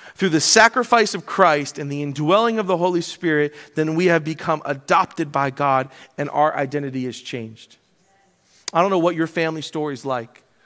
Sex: male